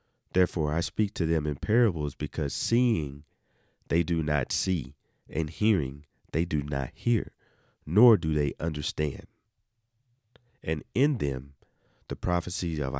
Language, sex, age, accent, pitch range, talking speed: English, male, 40-59, American, 75-100 Hz, 135 wpm